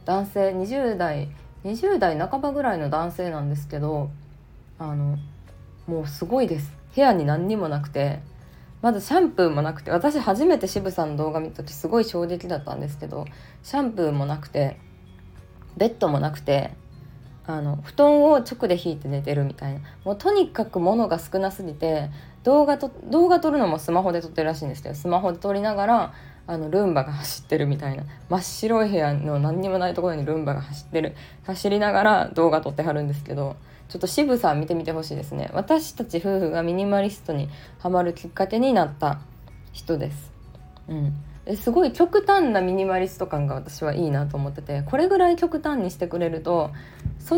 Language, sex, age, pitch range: Japanese, female, 20-39, 145-205 Hz